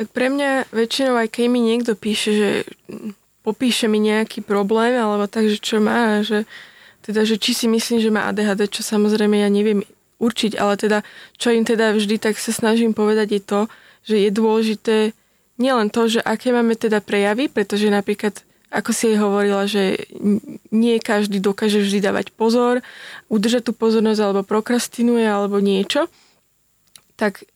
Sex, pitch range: female, 210-230 Hz